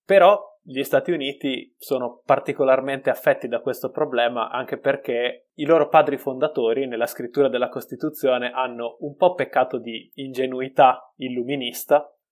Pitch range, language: 120-155 Hz, Italian